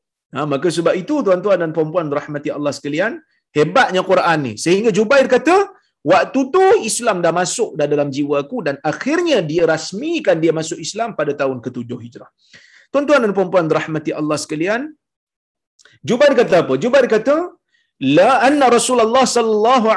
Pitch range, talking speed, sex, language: 180-265 Hz, 150 wpm, male, Malayalam